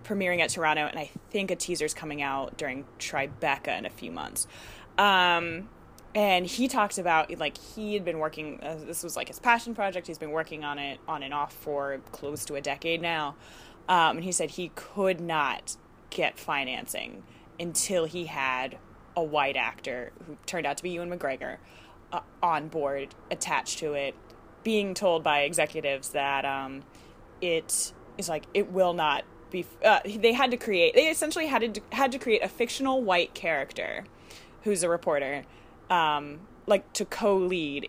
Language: English